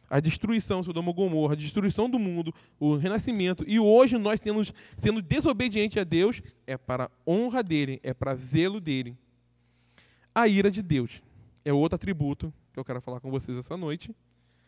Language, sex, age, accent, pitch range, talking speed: Portuguese, male, 20-39, Brazilian, 125-200 Hz, 170 wpm